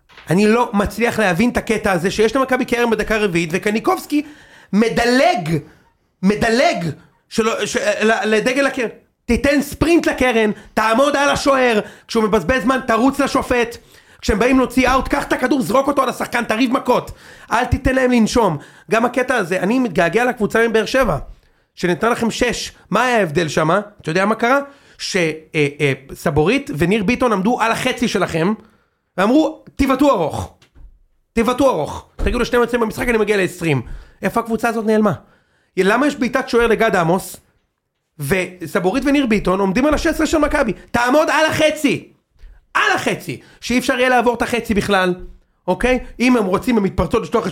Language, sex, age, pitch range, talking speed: Hebrew, male, 30-49, 200-255 Hz, 155 wpm